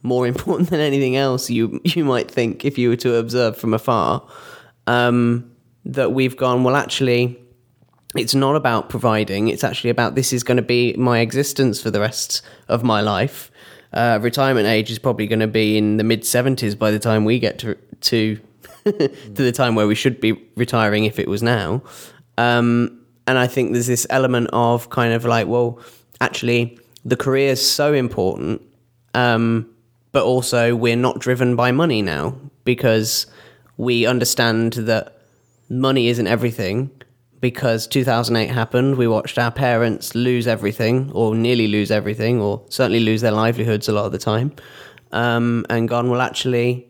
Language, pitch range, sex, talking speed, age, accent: English, 115-125 Hz, male, 175 wpm, 20-39, British